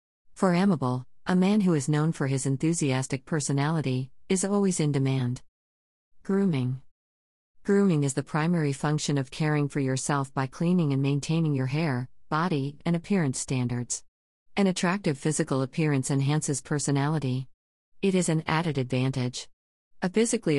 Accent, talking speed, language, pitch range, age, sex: American, 140 wpm, English, 130-165 Hz, 50-69, female